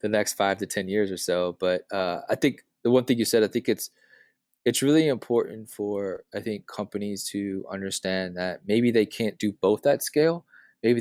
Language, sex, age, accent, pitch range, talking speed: English, male, 20-39, American, 100-115 Hz, 205 wpm